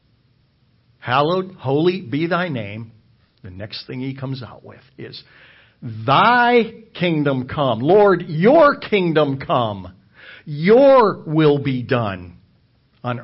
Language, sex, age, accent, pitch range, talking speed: English, male, 60-79, American, 120-170 Hz, 115 wpm